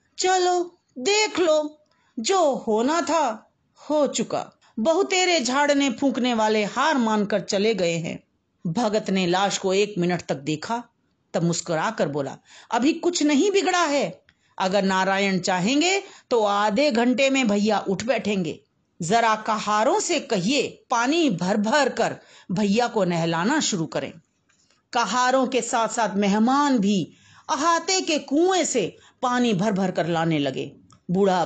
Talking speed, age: 135 wpm, 40-59